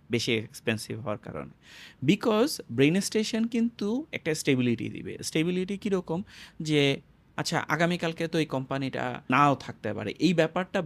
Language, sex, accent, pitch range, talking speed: Bengali, male, native, 125-170 Hz, 135 wpm